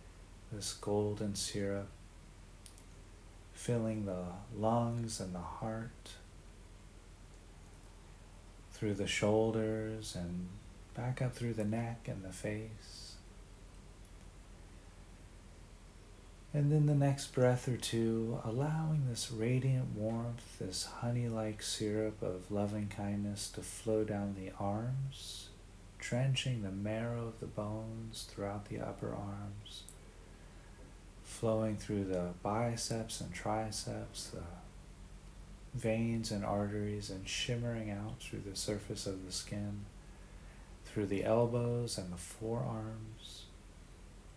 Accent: American